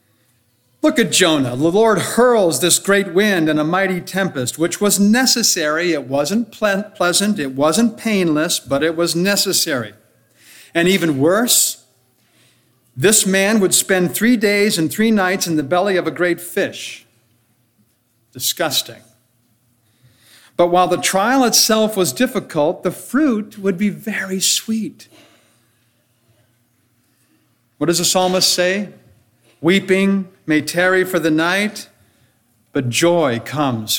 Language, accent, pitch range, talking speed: English, American, 125-195 Hz, 130 wpm